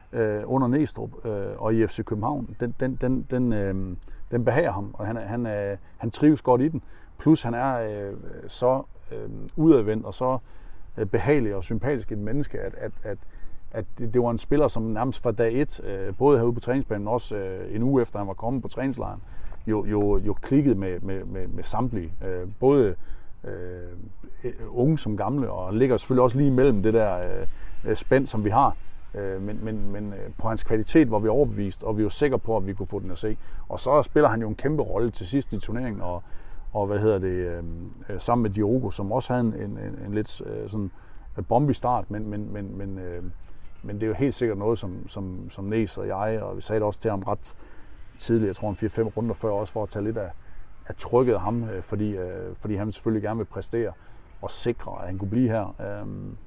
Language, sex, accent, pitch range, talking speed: Danish, male, native, 100-120 Hz, 205 wpm